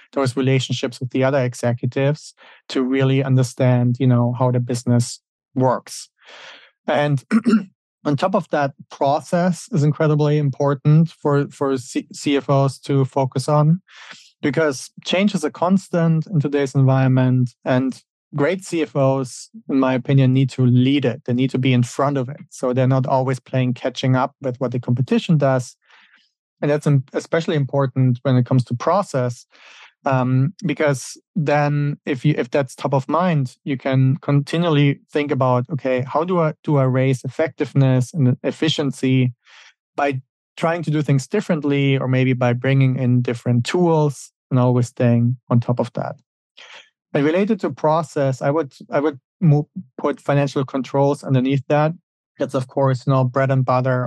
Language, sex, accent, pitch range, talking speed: English, male, German, 130-150 Hz, 160 wpm